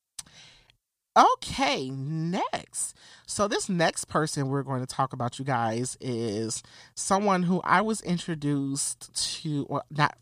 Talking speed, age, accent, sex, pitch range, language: 135 wpm, 30-49, American, male, 135-185 Hz, English